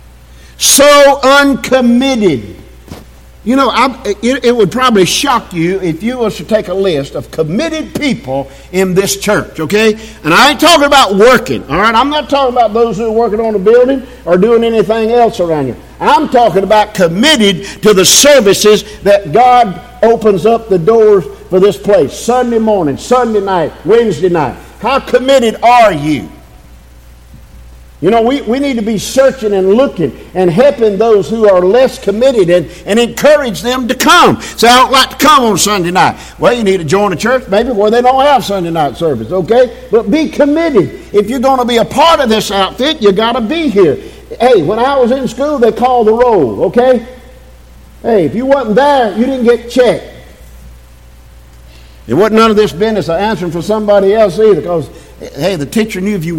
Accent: American